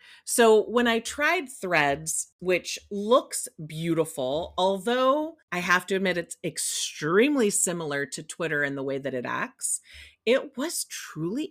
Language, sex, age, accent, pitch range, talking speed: English, female, 40-59, American, 170-230 Hz, 140 wpm